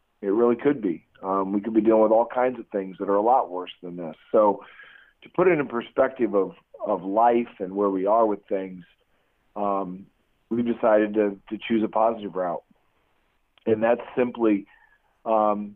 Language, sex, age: English, male, 40-59